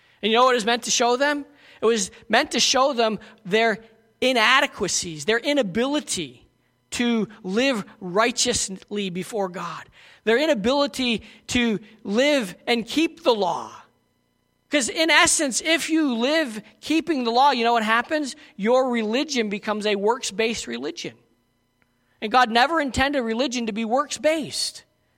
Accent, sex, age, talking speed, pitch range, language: American, male, 40-59, 145 wpm, 215-275 Hz, English